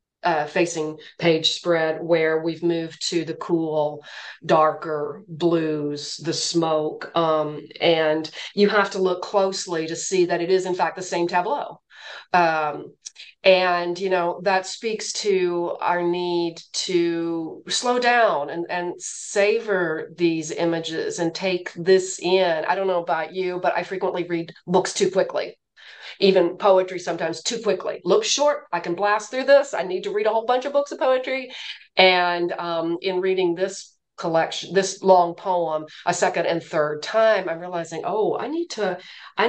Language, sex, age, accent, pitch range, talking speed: English, female, 40-59, American, 165-195 Hz, 165 wpm